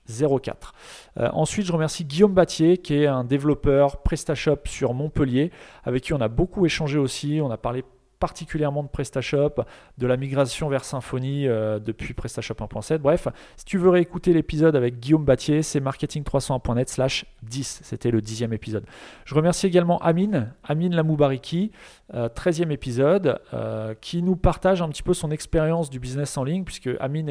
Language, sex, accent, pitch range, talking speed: French, male, French, 130-165 Hz, 170 wpm